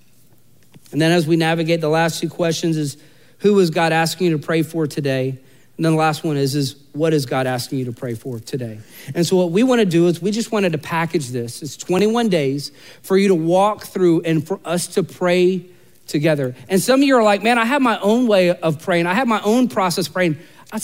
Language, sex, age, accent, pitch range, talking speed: English, male, 40-59, American, 165-250 Hz, 240 wpm